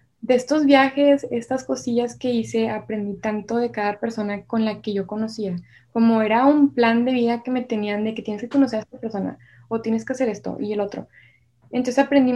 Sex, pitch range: female, 210-240 Hz